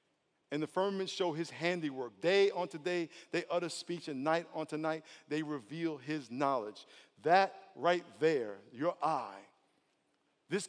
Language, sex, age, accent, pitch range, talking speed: English, male, 50-69, American, 150-180 Hz, 145 wpm